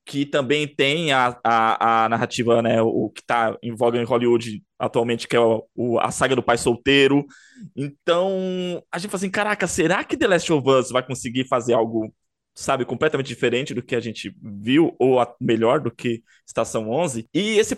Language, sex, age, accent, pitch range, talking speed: Portuguese, male, 20-39, Brazilian, 120-170 Hz, 200 wpm